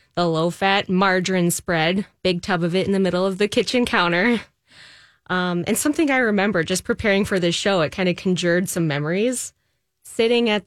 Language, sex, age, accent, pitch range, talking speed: English, female, 20-39, American, 165-210 Hz, 185 wpm